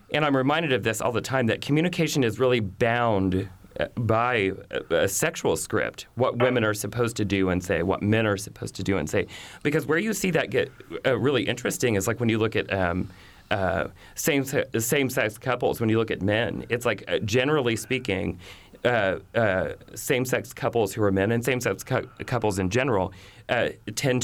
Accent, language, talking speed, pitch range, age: American, English, 190 wpm, 100-130 Hz, 30-49